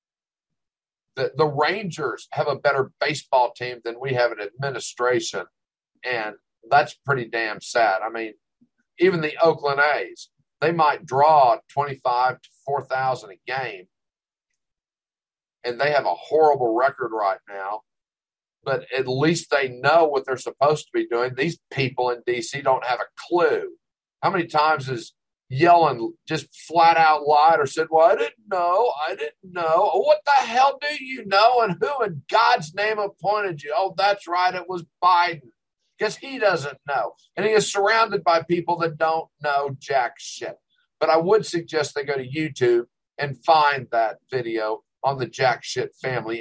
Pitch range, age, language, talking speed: 130-180 Hz, 50-69, English, 165 wpm